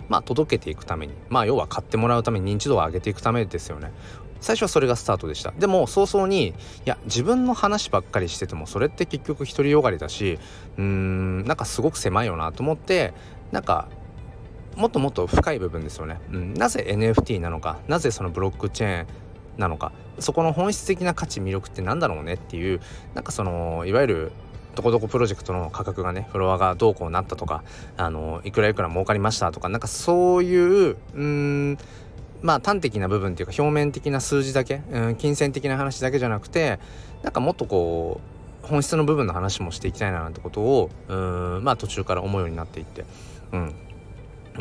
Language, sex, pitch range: Japanese, male, 95-135 Hz